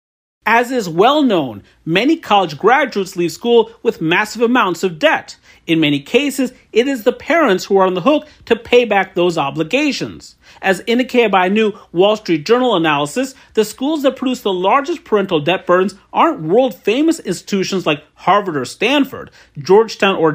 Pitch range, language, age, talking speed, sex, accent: 180-250 Hz, English, 40-59, 170 wpm, male, American